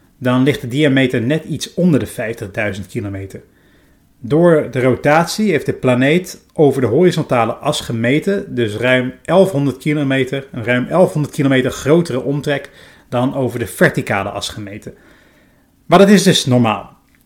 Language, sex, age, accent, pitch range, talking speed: Dutch, male, 30-49, Dutch, 125-155 Hz, 145 wpm